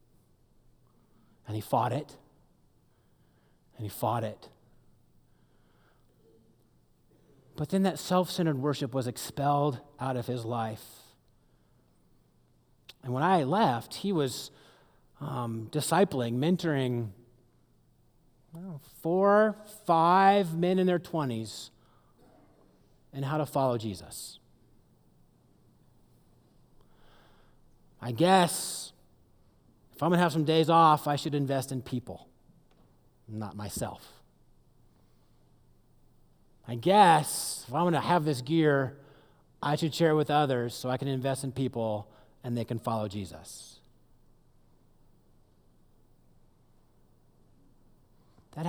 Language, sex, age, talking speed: English, male, 30-49, 105 wpm